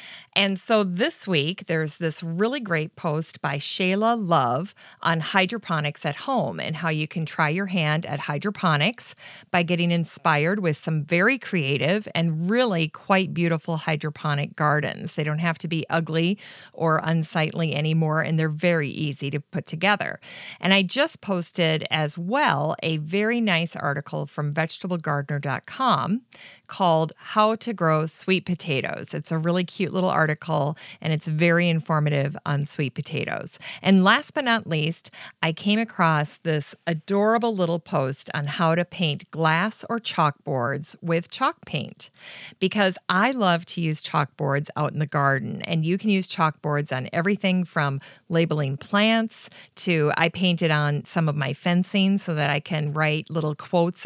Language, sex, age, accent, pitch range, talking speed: English, female, 40-59, American, 155-190 Hz, 160 wpm